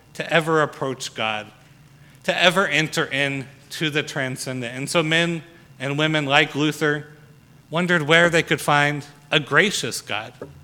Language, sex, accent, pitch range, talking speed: English, male, American, 140-160 Hz, 145 wpm